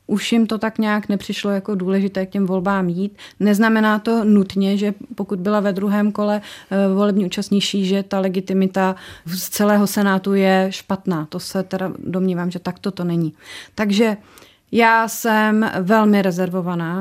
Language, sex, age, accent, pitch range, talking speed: Czech, female, 30-49, native, 190-215 Hz, 155 wpm